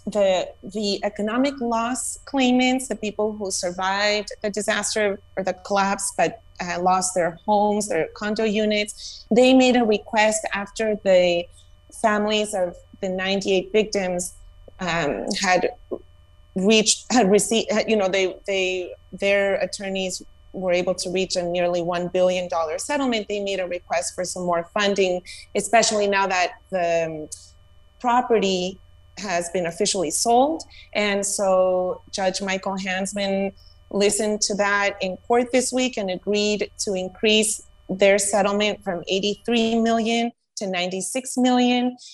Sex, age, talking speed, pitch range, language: female, 30-49, 135 wpm, 180-215 Hz, English